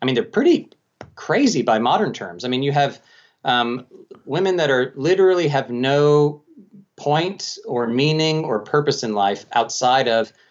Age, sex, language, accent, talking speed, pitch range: 30-49, male, English, American, 160 wpm, 120-155 Hz